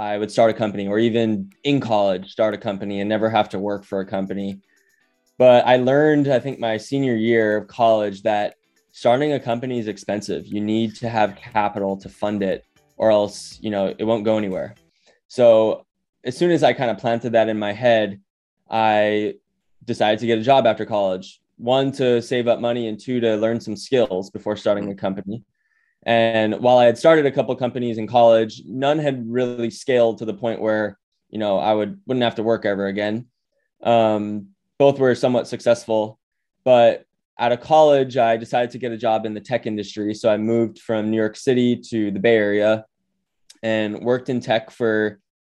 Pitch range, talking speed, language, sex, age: 105-125 Hz, 200 wpm, English, male, 10-29